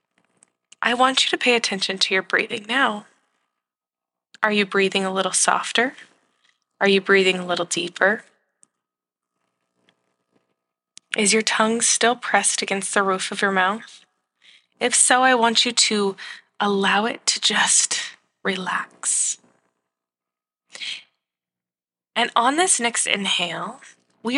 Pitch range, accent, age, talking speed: 180-290 Hz, American, 20-39, 125 wpm